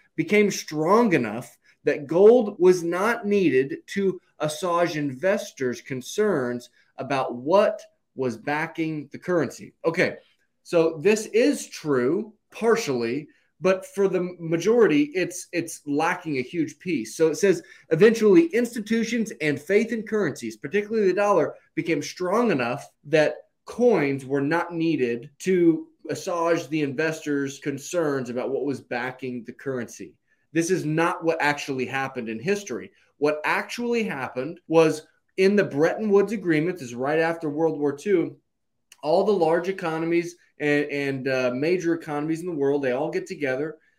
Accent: American